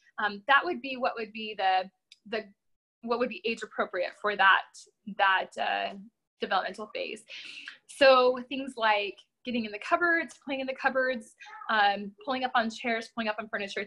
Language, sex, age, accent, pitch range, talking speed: English, female, 20-39, American, 210-265 Hz, 175 wpm